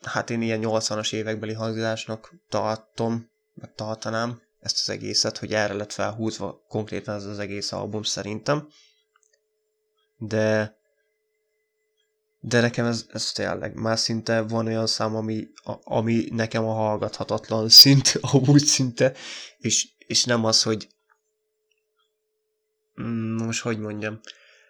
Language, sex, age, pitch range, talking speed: Hungarian, male, 20-39, 110-120 Hz, 125 wpm